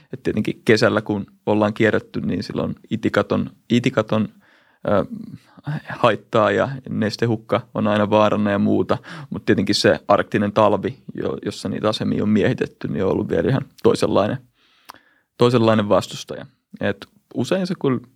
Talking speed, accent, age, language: 140 wpm, native, 30-49, Finnish